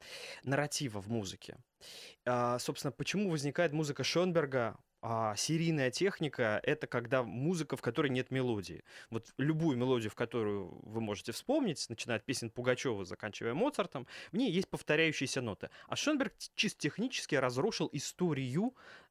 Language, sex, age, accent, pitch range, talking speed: Russian, male, 20-39, native, 130-180 Hz, 130 wpm